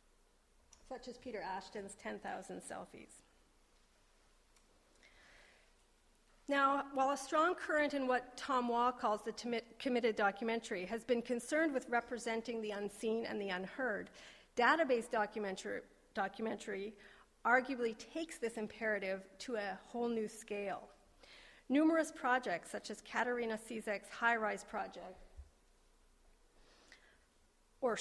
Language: English